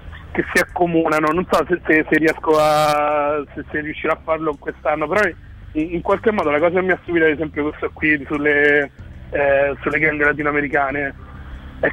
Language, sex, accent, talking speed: Italian, male, native, 185 wpm